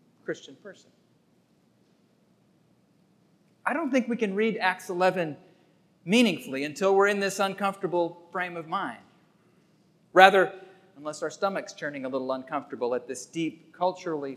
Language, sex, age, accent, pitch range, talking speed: English, male, 40-59, American, 160-210 Hz, 130 wpm